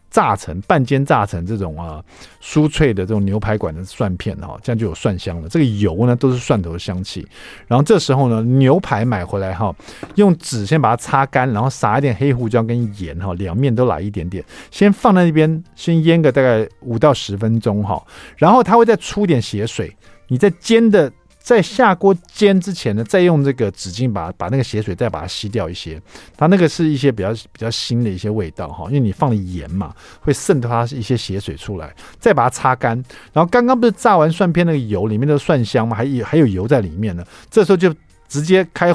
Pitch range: 100-155 Hz